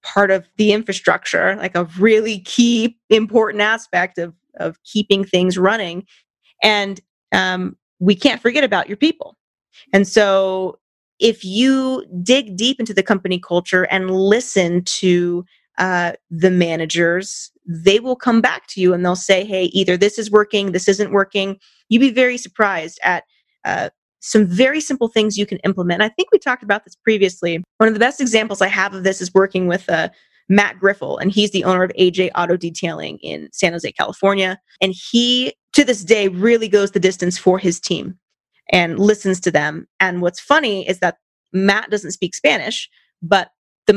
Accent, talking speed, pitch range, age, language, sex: American, 175 wpm, 185-220 Hz, 30-49, English, female